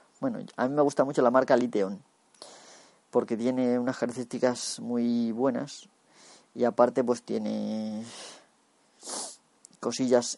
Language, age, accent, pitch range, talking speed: Spanish, 20-39, Spanish, 110-125 Hz, 115 wpm